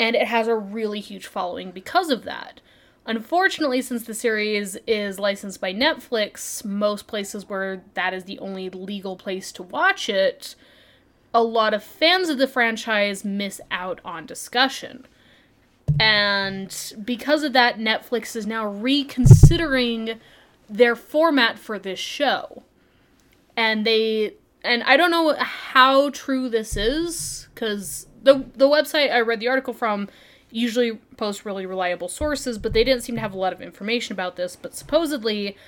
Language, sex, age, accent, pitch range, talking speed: English, female, 20-39, American, 200-260 Hz, 155 wpm